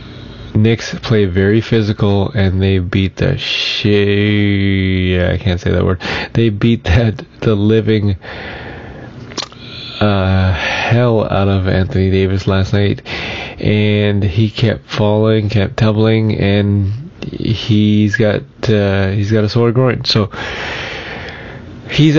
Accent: American